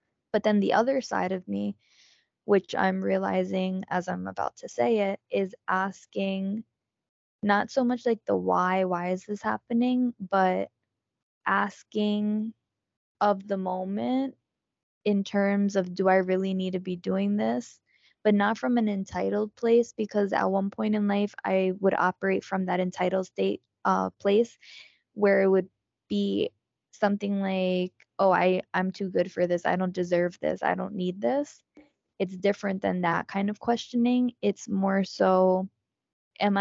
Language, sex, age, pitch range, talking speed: English, female, 20-39, 180-210 Hz, 160 wpm